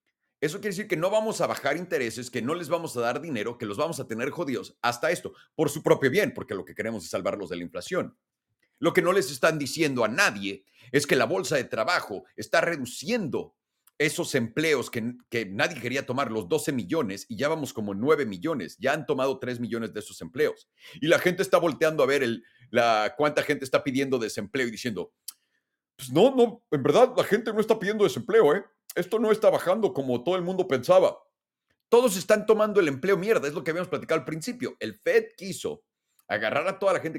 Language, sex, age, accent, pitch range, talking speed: Spanish, male, 40-59, Mexican, 130-195 Hz, 215 wpm